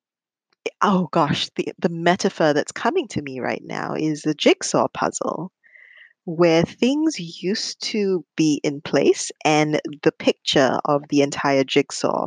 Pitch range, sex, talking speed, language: 150-215 Hz, female, 140 wpm, English